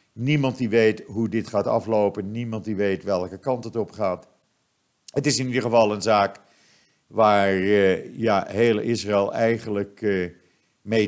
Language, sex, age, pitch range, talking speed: Dutch, male, 50-69, 100-125 Hz, 160 wpm